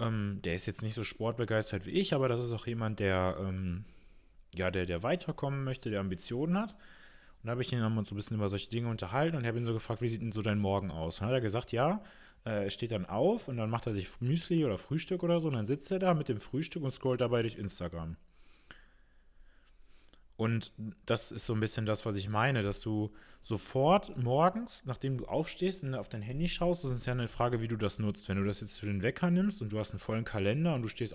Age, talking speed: 20-39, 250 wpm